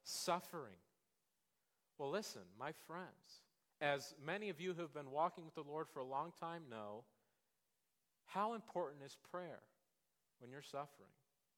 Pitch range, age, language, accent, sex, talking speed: 135-185 Hz, 40-59, English, American, male, 145 wpm